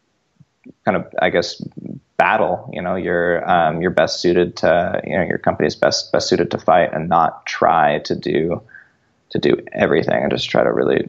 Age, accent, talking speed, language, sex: 20-39, American, 190 wpm, English, male